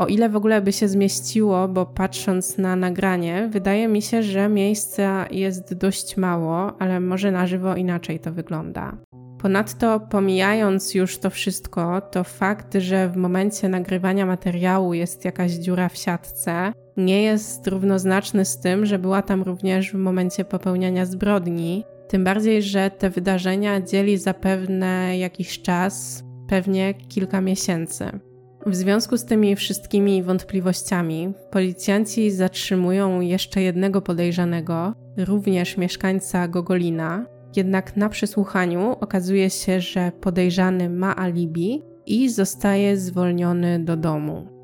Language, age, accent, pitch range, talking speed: Polish, 20-39, native, 180-200 Hz, 130 wpm